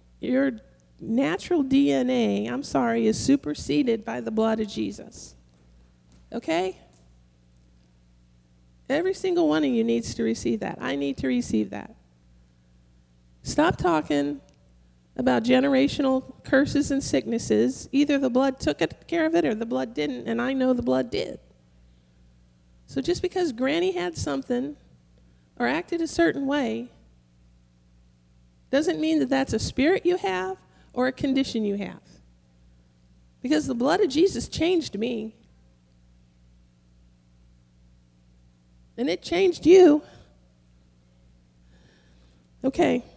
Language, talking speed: English, 120 wpm